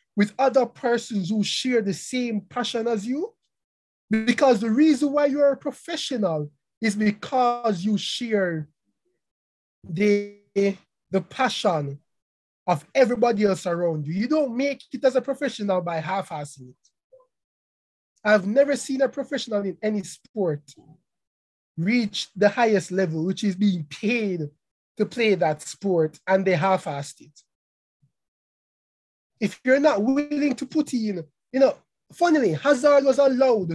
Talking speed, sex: 135 wpm, male